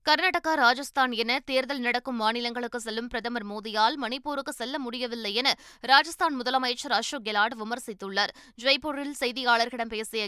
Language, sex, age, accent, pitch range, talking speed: Tamil, female, 20-39, native, 230-275 Hz, 125 wpm